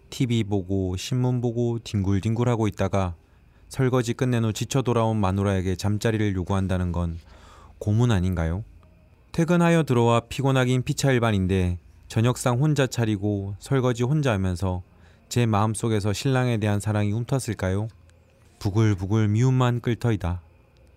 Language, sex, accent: Korean, male, native